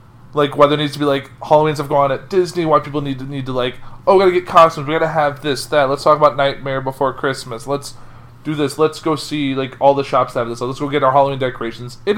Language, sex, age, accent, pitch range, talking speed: English, male, 20-39, American, 120-150 Hz, 270 wpm